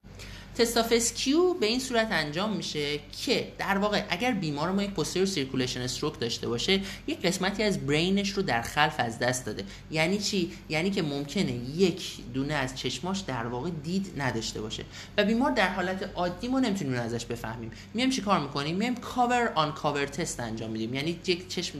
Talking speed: 180 wpm